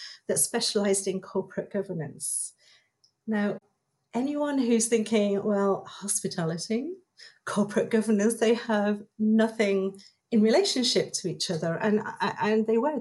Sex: female